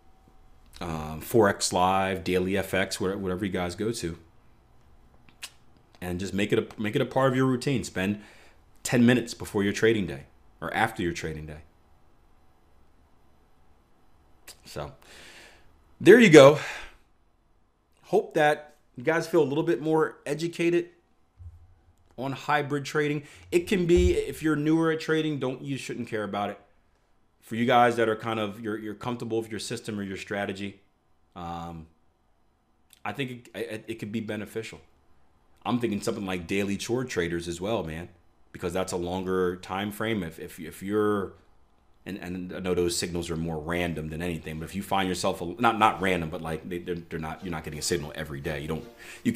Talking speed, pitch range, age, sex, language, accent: 180 wpm, 80-115 Hz, 30-49, male, English, American